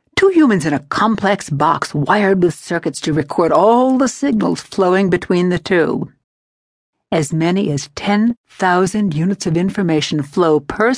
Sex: female